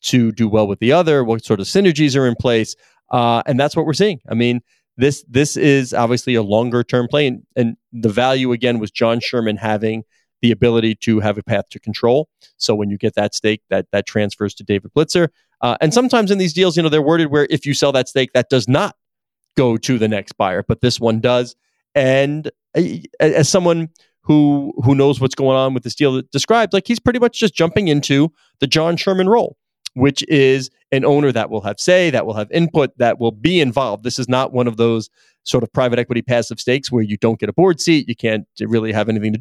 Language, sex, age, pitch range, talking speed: English, male, 30-49, 115-150 Hz, 230 wpm